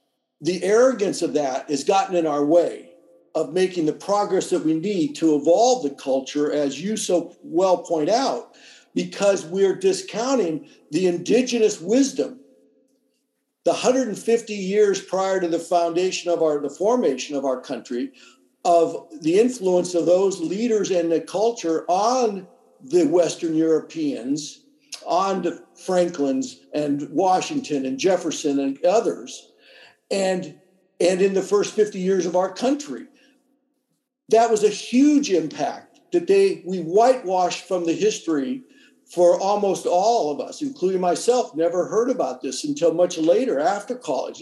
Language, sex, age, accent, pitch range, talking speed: English, male, 50-69, American, 170-240 Hz, 145 wpm